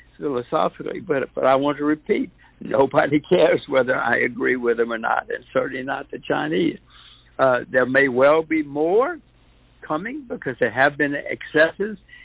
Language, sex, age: English, male, 60-79